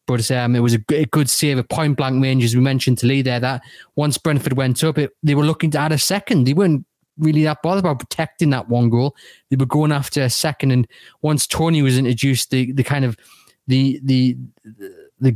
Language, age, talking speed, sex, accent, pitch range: English, 20-39, 235 wpm, male, British, 125-135 Hz